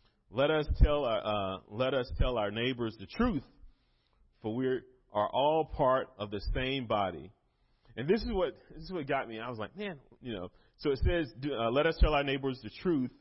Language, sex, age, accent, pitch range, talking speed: English, male, 30-49, American, 115-155 Hz, 215 wpm